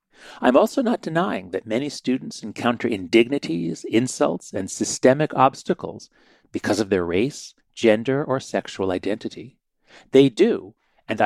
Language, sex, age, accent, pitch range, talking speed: English, male, 40-59, American, 115-150 Hz, 130 wpm